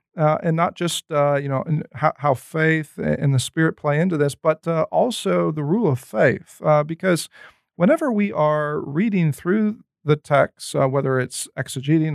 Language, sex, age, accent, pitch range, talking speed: English, male, 40-59, American, 145-180 Hz, 180 wpm